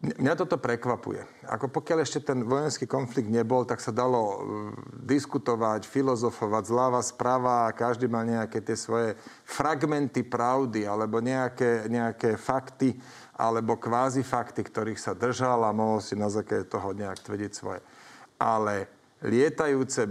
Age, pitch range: 40-59, 115-135 Hz